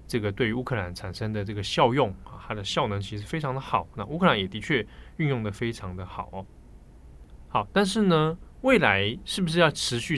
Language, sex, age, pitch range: Chinese, male, 20-39, 100-140 Hz